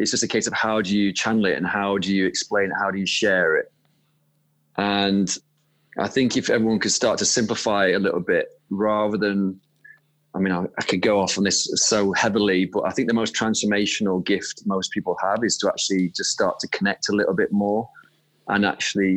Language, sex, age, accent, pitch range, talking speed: English, male, 30-49, British, 95-110 Hz, 215 wpm